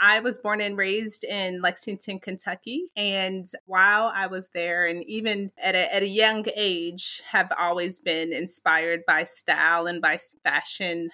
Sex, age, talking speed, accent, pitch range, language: female, 30-49, 160 wpm, American, 170-210 Hz, English